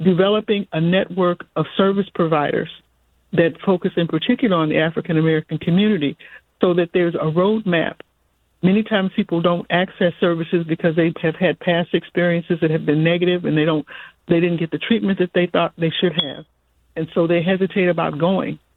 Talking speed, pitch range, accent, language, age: 175 wpm, 165-190 Hz, American, English, 50-69